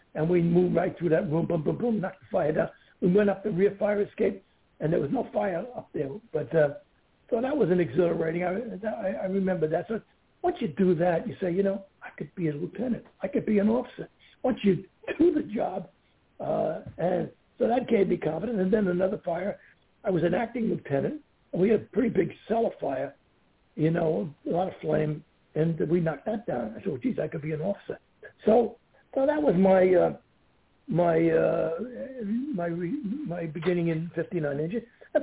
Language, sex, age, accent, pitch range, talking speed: English, male, 60-79, American, 165-215 Hz, 210 wpm